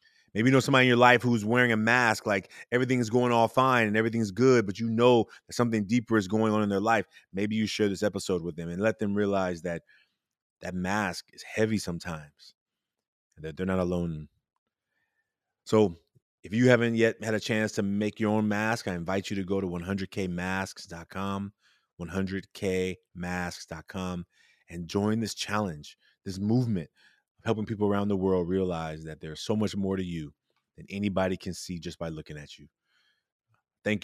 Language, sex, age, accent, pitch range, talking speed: English, male, 30-49, American, 95-115 Hz, 185 wpm